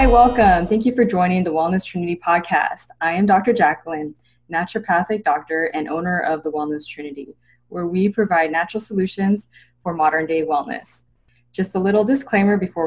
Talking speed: 170 wpm